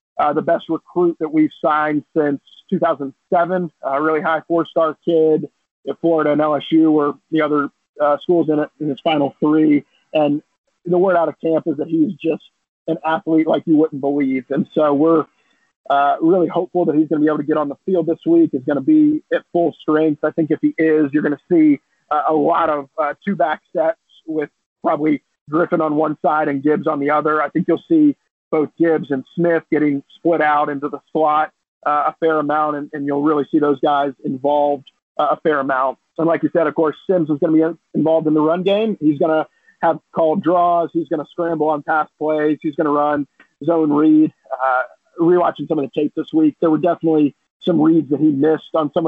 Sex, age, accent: male, 50-69, American